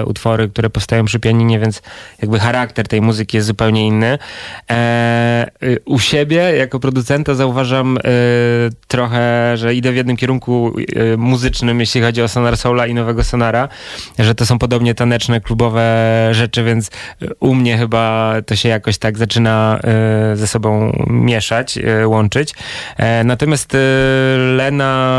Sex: male